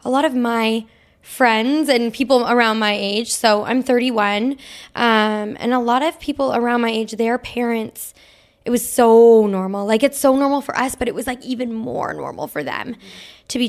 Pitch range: 220-250 Hz